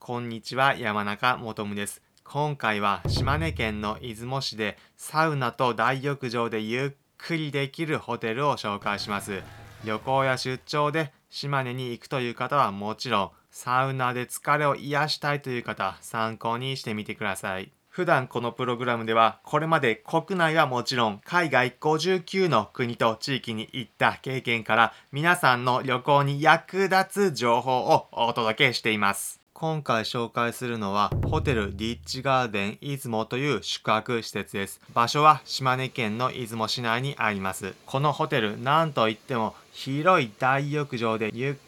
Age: 20-39